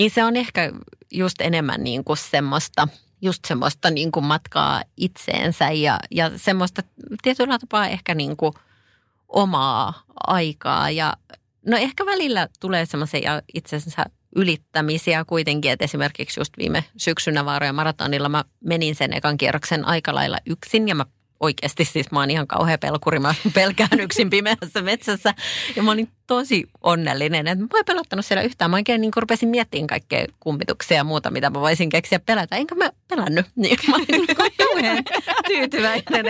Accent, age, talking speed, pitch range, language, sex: native, 30-49, 155 wpm, 155-215 Hz, Finnish, female